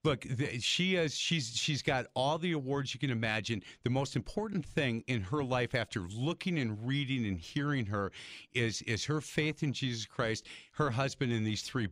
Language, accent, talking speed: English, American, 190 wpm